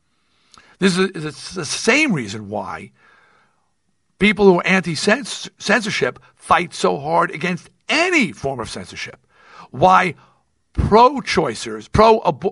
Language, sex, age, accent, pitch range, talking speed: English, male, 50-69, American, 155-225 Hz, 105 wpm